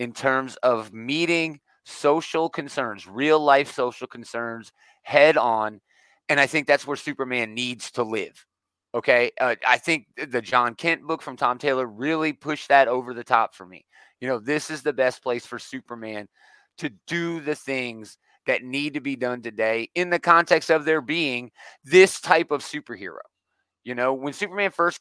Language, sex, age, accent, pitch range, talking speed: English, male, 30-49, American, 115-150 Hz, 180 wpm